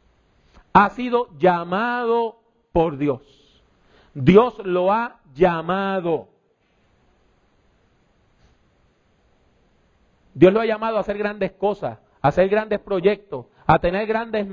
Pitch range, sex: 170-245 Hz, male